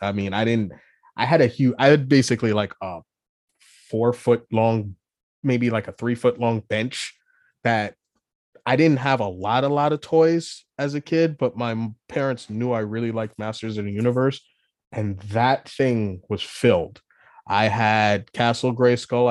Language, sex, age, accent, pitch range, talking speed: English, male, 30-49, American, 115-135 Hz, 175 wpm